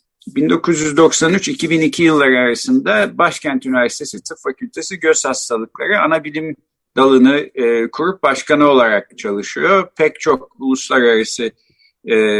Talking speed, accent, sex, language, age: 100 wpm, native, male, Turkish, 50-69